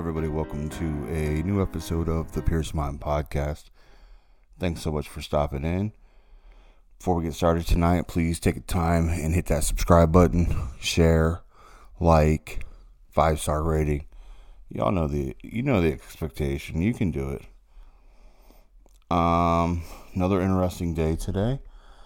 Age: 30-49